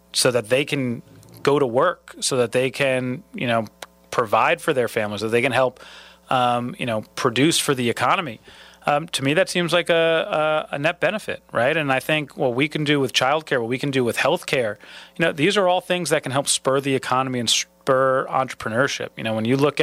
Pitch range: 125-145 Hz